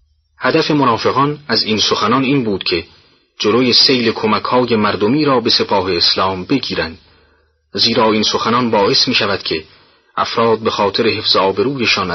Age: 30-49